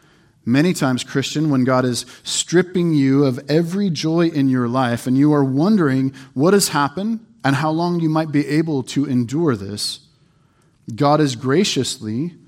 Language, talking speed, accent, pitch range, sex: English, 165 wpm, American, 125-160 Hz, male